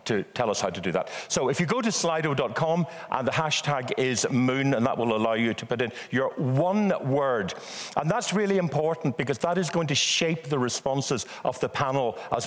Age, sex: 50-69, male